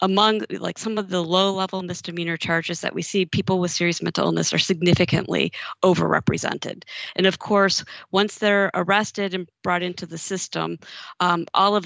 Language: English